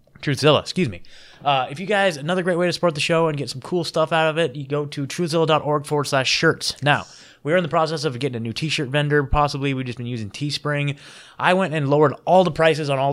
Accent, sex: American, male